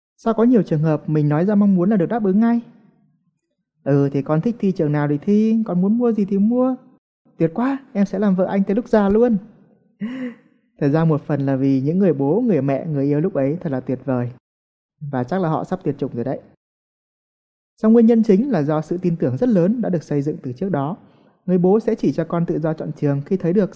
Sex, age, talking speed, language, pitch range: male, 20-39, 255 wpm, Vietnamese, 145-205 Hz